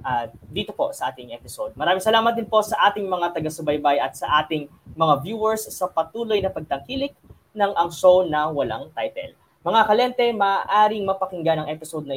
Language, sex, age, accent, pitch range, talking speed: Filipino, female, 20-39, native, 155-205 Hz, 175 wpm